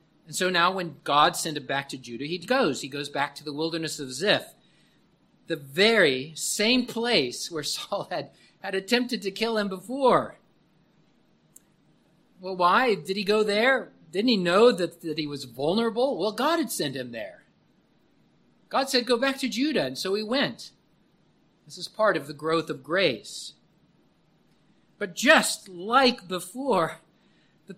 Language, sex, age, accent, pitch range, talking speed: English, male, 50-69, American, 165-230 Hz, 165 wpm